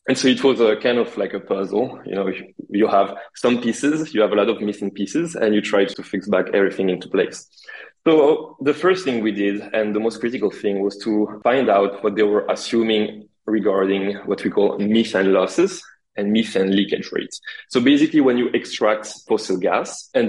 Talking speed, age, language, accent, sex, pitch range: 205 wpm, 20-39, English, French, male, 100-125 Hz